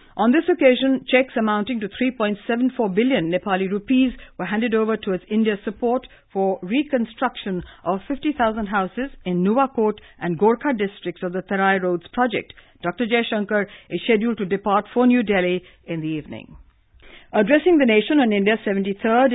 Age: 50-69